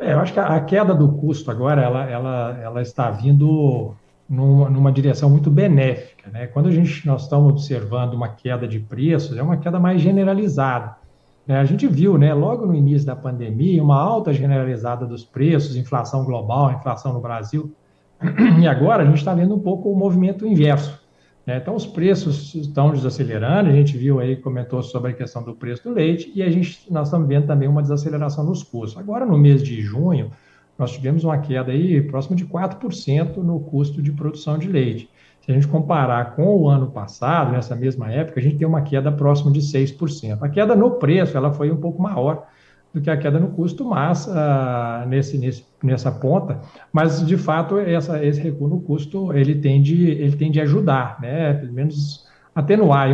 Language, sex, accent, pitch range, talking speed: Portuguese, male, Brazilian, 130-160 Hz, 185 wpm